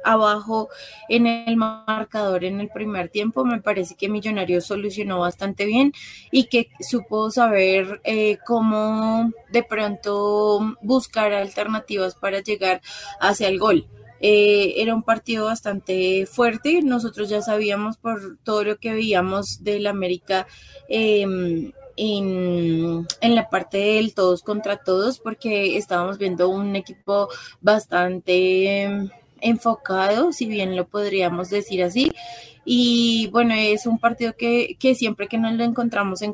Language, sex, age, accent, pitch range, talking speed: Spanish, female, 20-39, Colombian, 190-225 Hz, 135 wpm